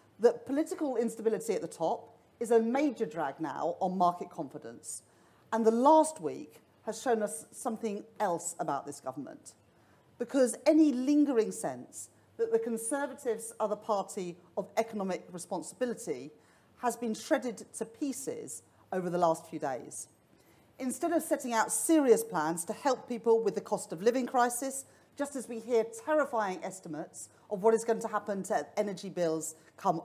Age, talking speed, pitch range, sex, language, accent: 40-59, 160 wpm, 205-275 Hz, female, English, British